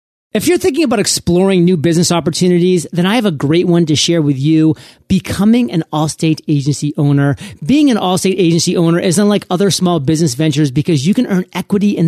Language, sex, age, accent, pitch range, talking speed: English, male, 30-49, American, 160-195 Hz, 200 wpm